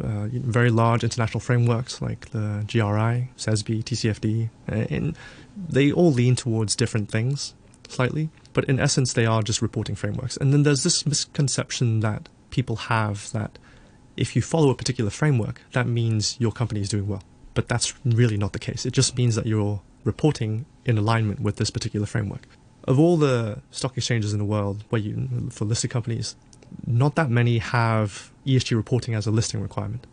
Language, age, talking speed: English, 20-39, 175 wpm